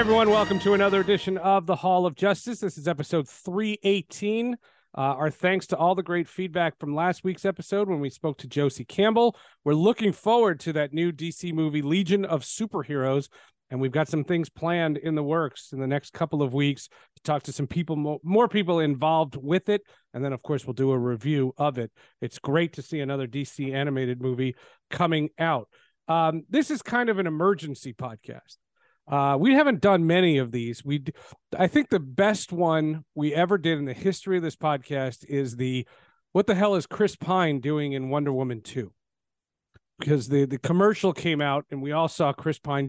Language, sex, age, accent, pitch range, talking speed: English, male, 40-59, American, 140-190 Hz, 200 wpm